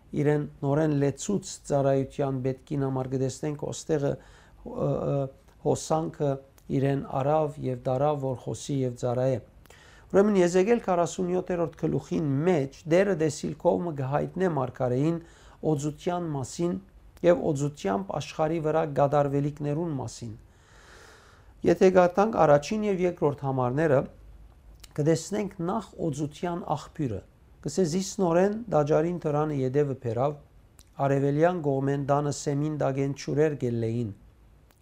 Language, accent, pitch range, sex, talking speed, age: English, Turkish, 130-160 Hz, male, 105 wpm, 50-69